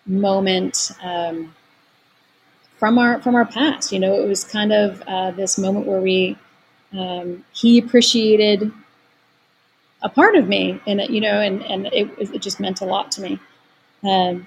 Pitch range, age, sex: 185-225 Hz, 30-49, female